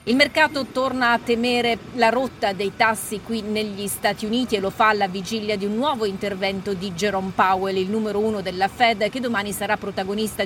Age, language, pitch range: 40-59, Italian, 195-230 Hz